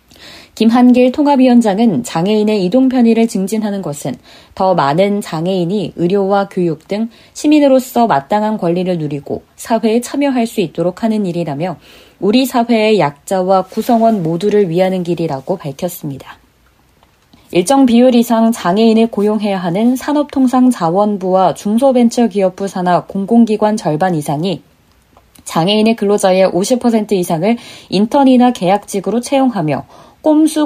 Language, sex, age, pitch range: Korean, female, 20-39, 180-230 Hz